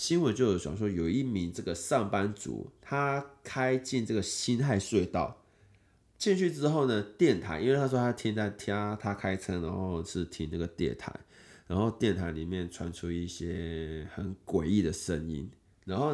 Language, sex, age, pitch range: Chinese, male, 20-39, 85-110 Hz